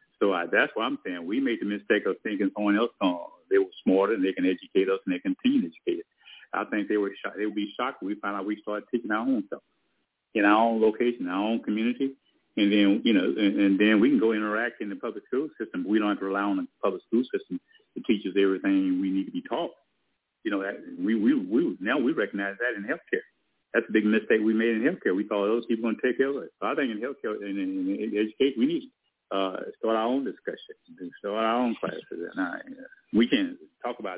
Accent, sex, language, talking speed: American, male, English, 255 wpm